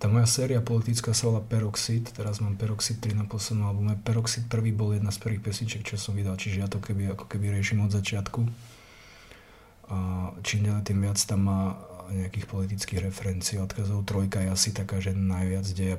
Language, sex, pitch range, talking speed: Slovak, male, 100-110 Hz, 185 wpm